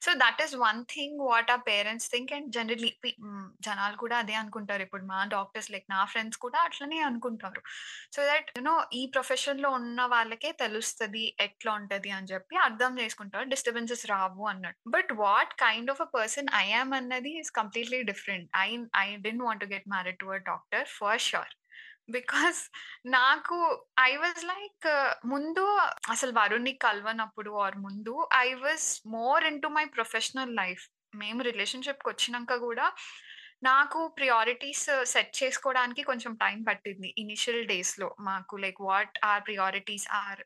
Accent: native